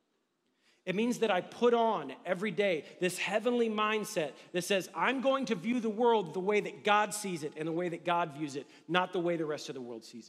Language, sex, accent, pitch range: English, male, American, 155-185 Hz